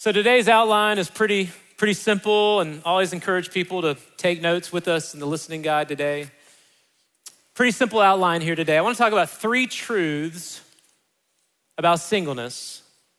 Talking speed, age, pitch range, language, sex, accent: 160 wpm, 30-49, 155-210 Hz, English, male, American